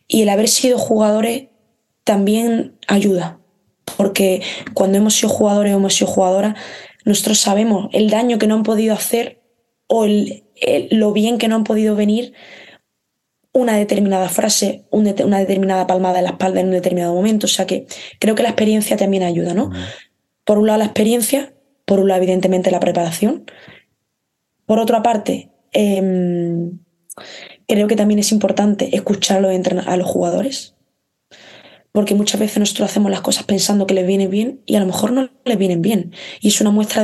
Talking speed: 170 wpm